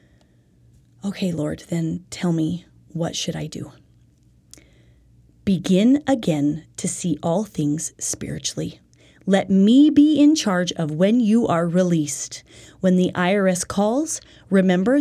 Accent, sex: American, female